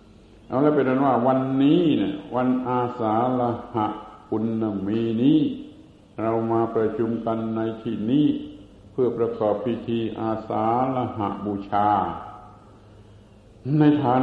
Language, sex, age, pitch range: Thai, male, 60-79, 105-125 Hz